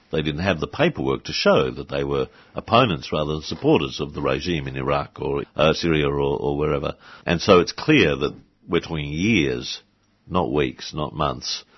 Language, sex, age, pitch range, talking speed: English, male, 60-79, 75-90 Hz, 185 wpm